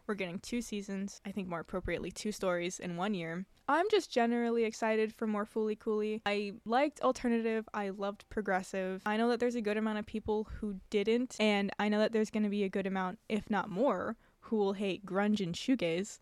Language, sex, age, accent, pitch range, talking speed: English, female, 10-29, American, 195-235 Hz, 215 wpm